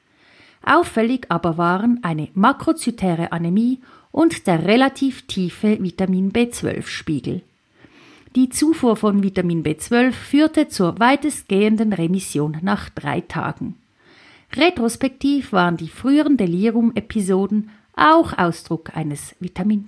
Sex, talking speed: female, 105 wpm